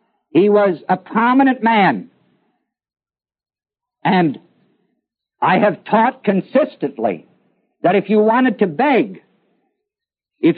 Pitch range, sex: 180-240 Hz, male